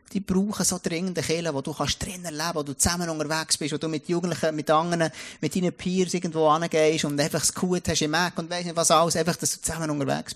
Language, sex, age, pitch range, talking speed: German, male, 30-49, 140-185 Hz, 250 wpm